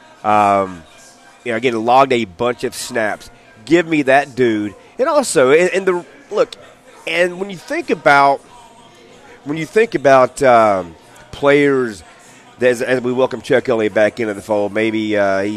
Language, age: English, 30-49